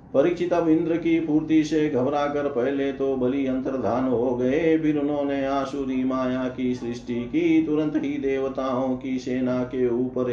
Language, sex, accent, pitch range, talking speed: Hindi, male, native, 120-140 Hz, 145 wpm